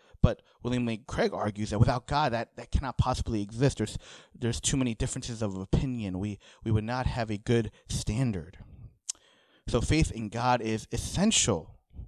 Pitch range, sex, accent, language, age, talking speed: 105-130 Hz, male, American, English, 30-49, 170 wpm